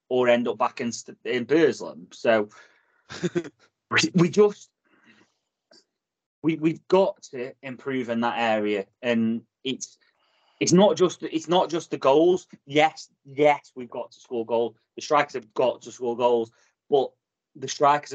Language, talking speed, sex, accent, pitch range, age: English, 150 wpm, male, British, 125-155 Hz, 30-49